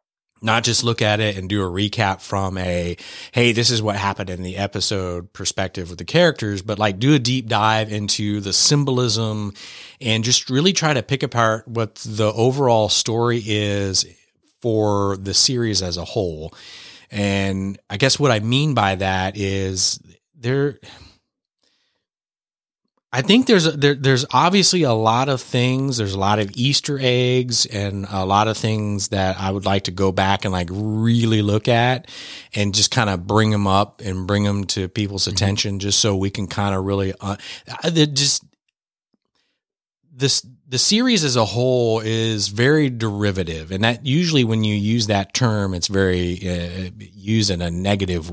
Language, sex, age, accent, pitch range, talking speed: English, male, 30-49, American, 95-125 Hz, 175 wpm